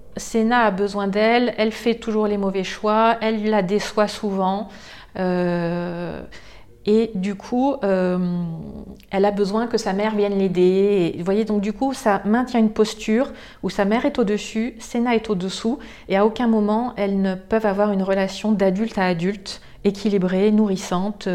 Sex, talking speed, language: female, 170 wpm, French